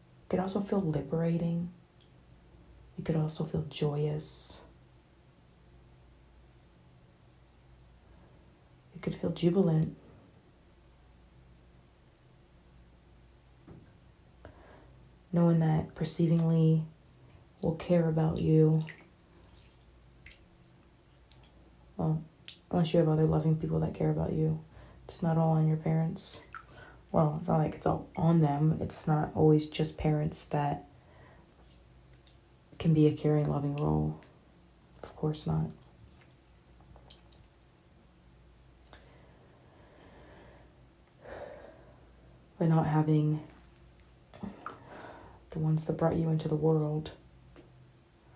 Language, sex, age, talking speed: English, female, 30-49, 90 wpm